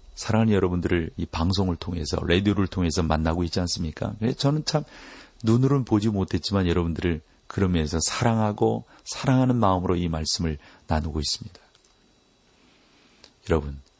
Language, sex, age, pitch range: Korean, male, 40-59, 90-120 Hz